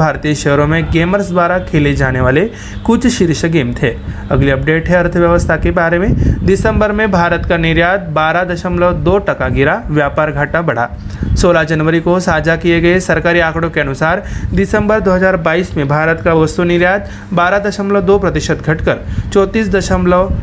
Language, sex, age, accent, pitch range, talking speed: Marathi, male, 30-49, native, 155-190 Hz, 90 wpm